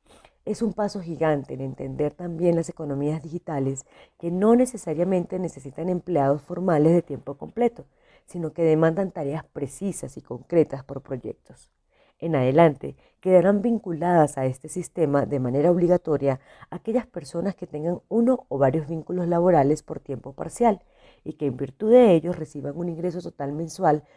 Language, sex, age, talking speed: Spanish, female, 40-59, 150 wpm